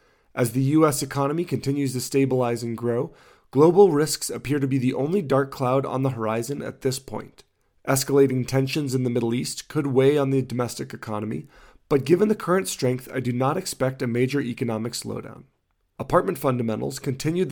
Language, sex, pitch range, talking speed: English, male, 125-145 Hz, 180 wpm